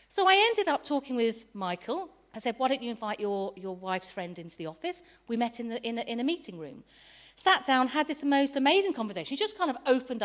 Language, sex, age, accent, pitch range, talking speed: English, female, 40-59, British, 190-275 Hz, 245 wpm